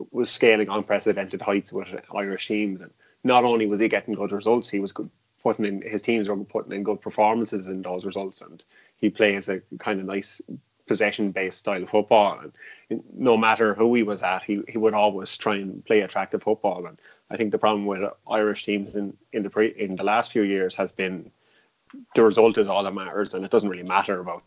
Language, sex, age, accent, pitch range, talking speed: English, male, 20-39, Irish, 95-110 Hz, 215 wpm